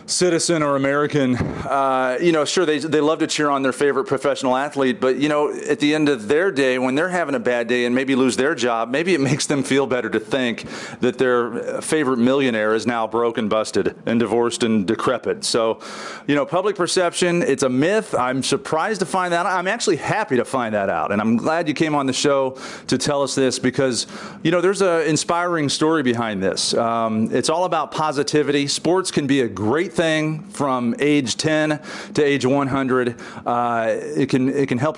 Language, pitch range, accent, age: English, 125-150 Hz, American, 40-59